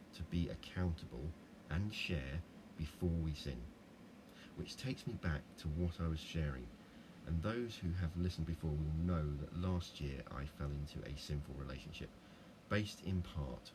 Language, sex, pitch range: English, male, 75-90 Hz